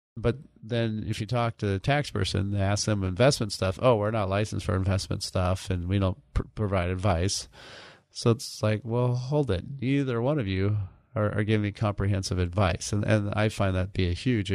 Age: 30-49